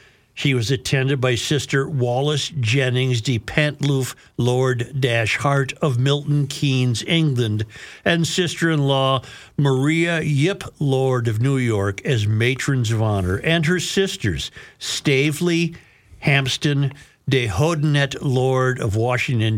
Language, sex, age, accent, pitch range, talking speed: English, male, 60-79, American, 115-150 Hz, 115 wpm